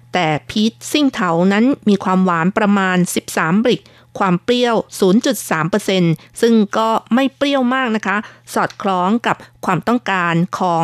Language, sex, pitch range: Thai, female, 175-220 Hz